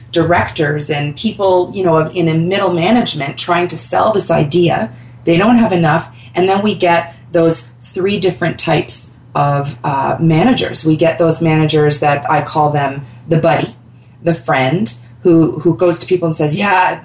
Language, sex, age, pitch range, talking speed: English, female, 30-49, 140-180 Hz, 175 wpm